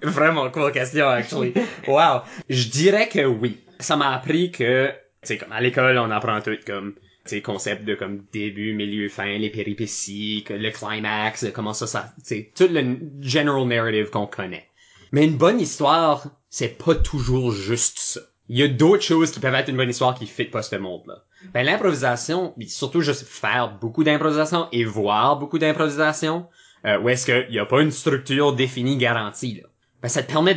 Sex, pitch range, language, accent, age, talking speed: male, 110-145 Hz, French, Canadian, 20-39, 185 wpm